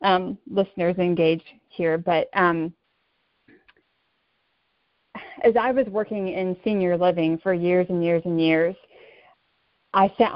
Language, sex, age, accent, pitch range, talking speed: English, female, 30-49, American, 180-220 Hz, 120 wpm